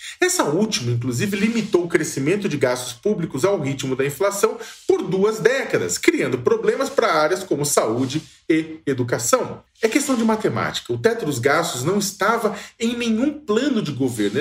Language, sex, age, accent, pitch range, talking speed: Portuguese, male, 40-59, Brazilian, 150-245 Hz, 160 wpm